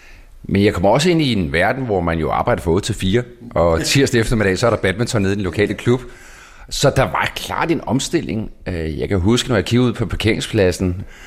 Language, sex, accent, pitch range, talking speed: Danish, male, native, 85-115 Hz, 225 wpm